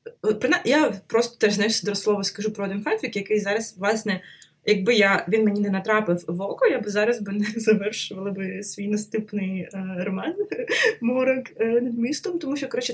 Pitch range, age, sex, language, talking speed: 170-220 Hz, 20-39, female, Ukrainian, 175 wpm